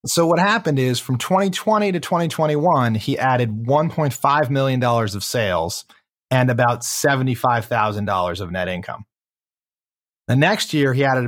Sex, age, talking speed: male, 30-49, 135 wpm